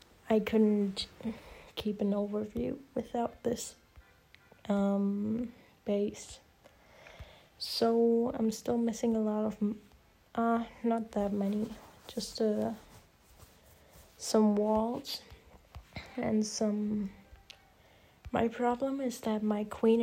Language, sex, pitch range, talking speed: English, female, 205-230 Hz, 100 wpm